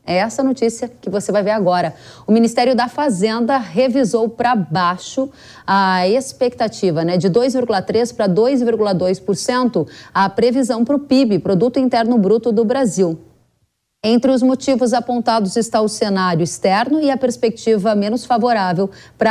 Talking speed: 145 wpm